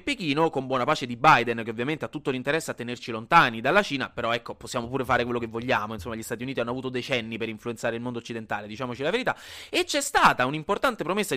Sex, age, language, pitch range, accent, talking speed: male, 30-49, Italian, 140-225 Hz, native, 230 wpm